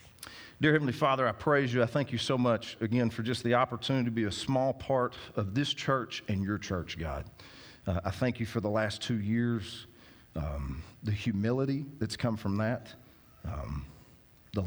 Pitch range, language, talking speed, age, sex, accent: 95-115 Hz, English, 190 wpm, 40-59, male, American